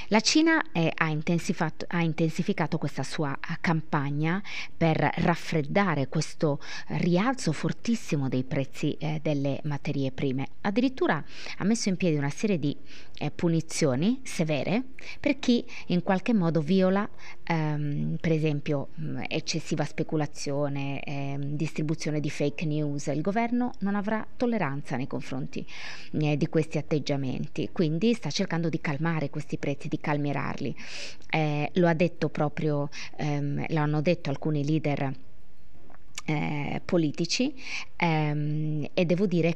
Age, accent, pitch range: 20-39, native, 145-170 Hz